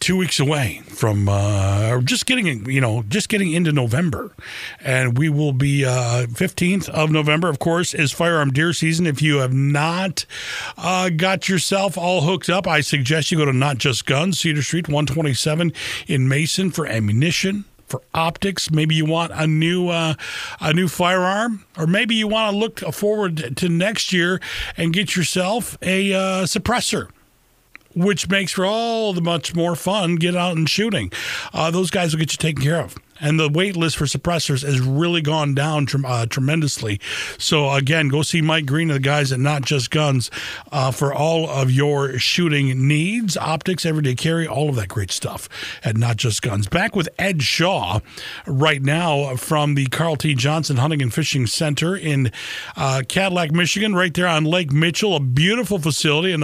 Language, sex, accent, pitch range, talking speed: English, male, American, 140-175 Hz, 185 wpm